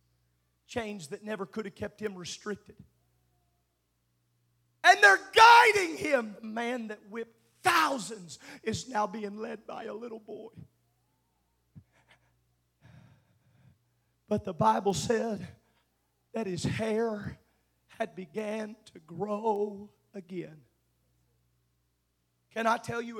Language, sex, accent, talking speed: English, male, American, 105 wpm